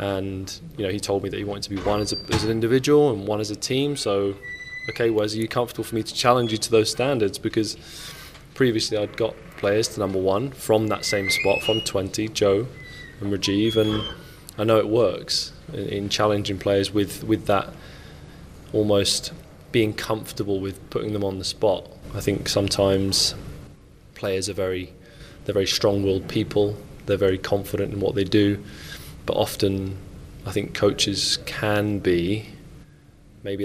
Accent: British